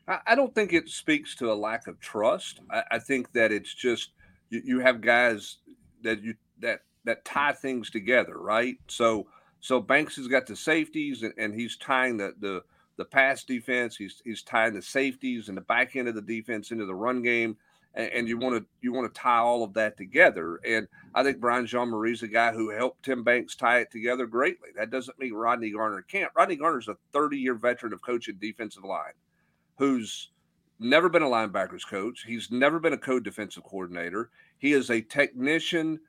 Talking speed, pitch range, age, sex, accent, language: 200 wpm, 110-130 Hz, 50-69, male, American, English